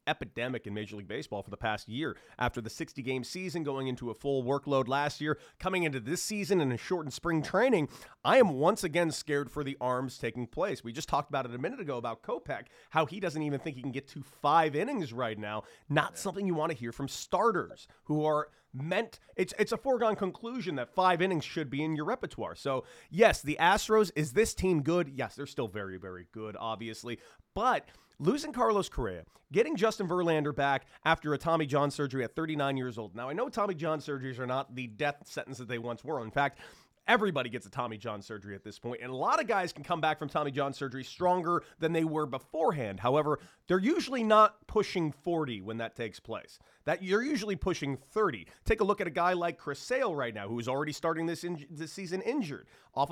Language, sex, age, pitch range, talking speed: English, male, 30-49, 125-175 Hz, 225 wpm